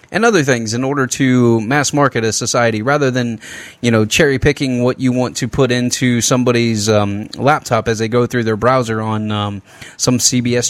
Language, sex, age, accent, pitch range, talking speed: English, male, 20-39, American, 110-140 Hz, 195 wpm